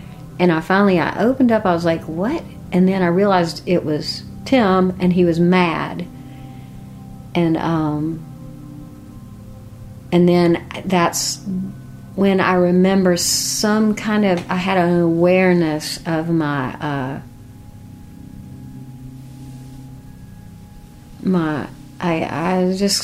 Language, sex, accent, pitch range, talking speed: English, female, American, 140-185 Hz, 110 wpm